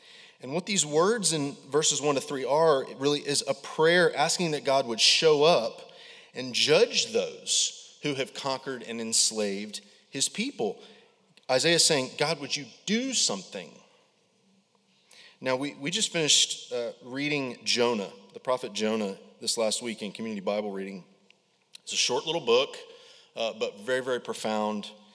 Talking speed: 160 wpm